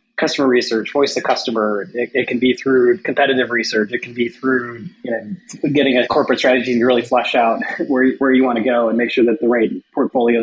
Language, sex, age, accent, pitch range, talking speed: English, male, 20-39, American, 125-165 Hz, 225 wpm